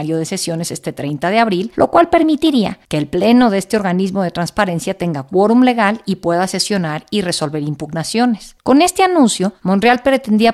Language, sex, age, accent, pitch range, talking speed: Spanish, female, 50-69, Mexican, 170-230 Hz, 175 wpm